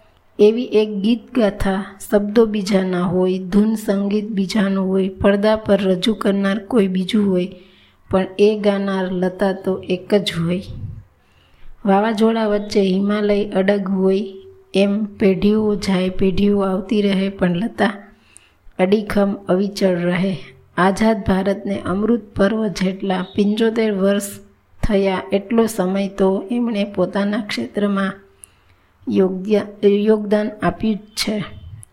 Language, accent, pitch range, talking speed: Gujarati, native, 190-210 Hz, 80 wpm